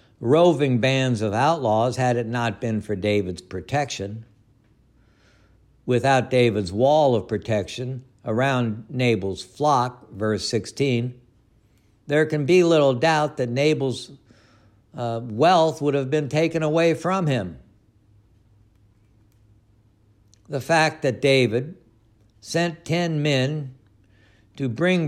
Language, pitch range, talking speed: English, 105-140 Hz, 110 wpm